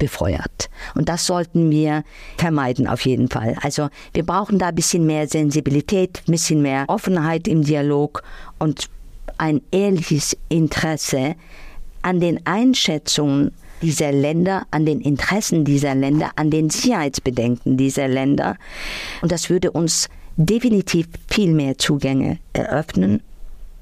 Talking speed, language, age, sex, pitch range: 130 wpm, German, 50-69, female, 145-185 Hz